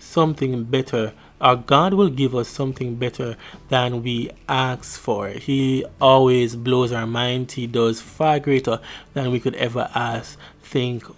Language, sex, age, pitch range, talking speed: English, male, 20-39, 120-145 Hz, 150 wpm